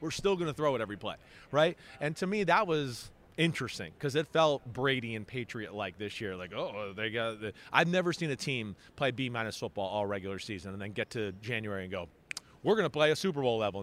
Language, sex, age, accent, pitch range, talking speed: English, male, 30-49, American, 110-150 Hz, 245 wpm